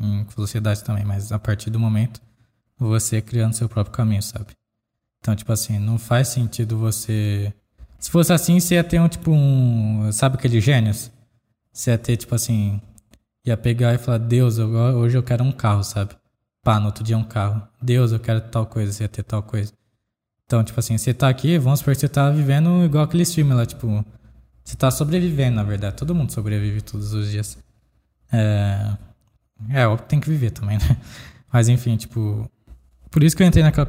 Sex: male